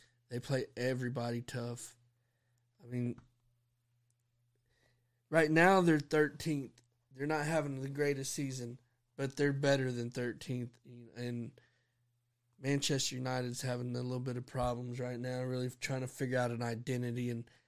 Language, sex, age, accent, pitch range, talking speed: English, male, 20-39, American, 120-135 Hz, 135 wpm